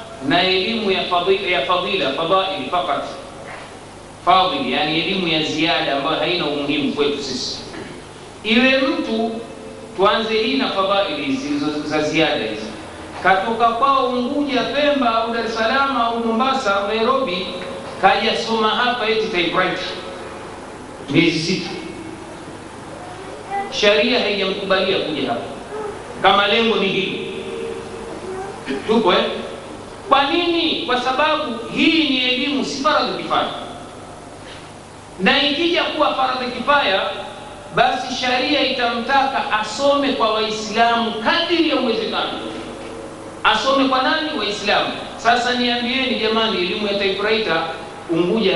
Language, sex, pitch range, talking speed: Swahili, male, 190-250 Hz, 120 wpm